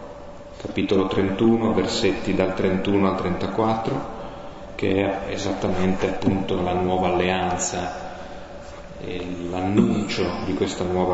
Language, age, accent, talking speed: Italian, 30-49, native, 100 wpm